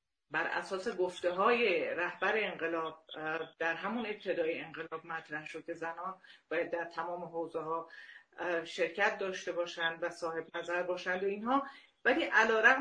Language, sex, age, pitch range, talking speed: Persian, female, 40-59, 170-220 Hz, 135 wpm